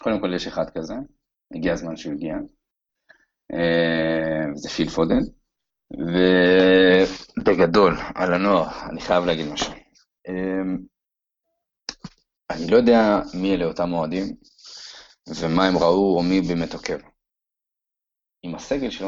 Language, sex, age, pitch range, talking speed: Hebrew, male, 30-49, 85-130 Hz, 115 wpm